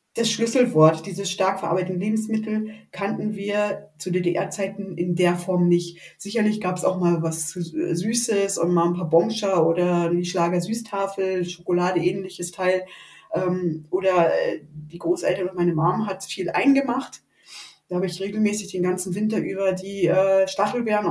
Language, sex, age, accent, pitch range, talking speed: German, female, 20-39, German, 175-215 Hz, 140 wpm